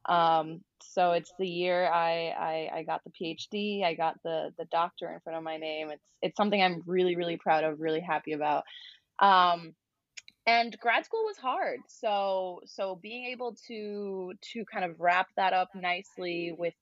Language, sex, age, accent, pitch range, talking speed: English, female, 20-39, American, 165-200 Hz, 180 wpm